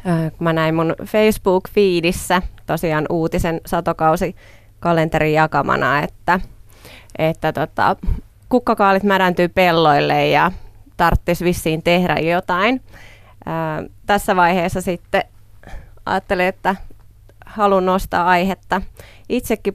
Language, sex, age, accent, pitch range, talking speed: Finnish, female, 20-39, native, 155-180 Hz, 90 wpm